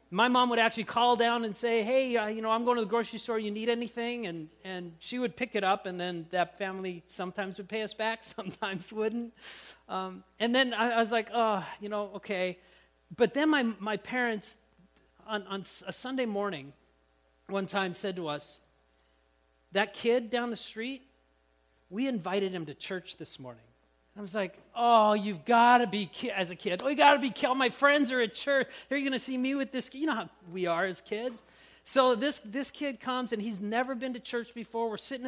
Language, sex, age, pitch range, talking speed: English, male, 40-59, 190-245 Hz, 220 wpm